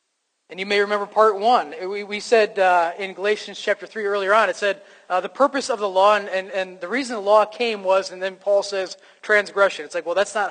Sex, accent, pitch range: male, American, 190-225 Hz